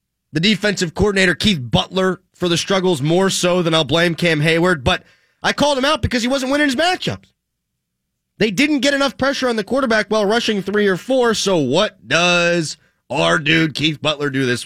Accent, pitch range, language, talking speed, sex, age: American, 145-215 Hz, English, 195 wpm, male, 30-49